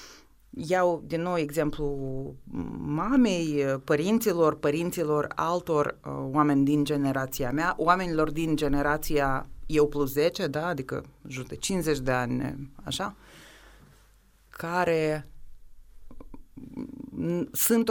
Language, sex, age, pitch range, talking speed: Romanian, female, 30-49, 140-175 Hz, 95 wpm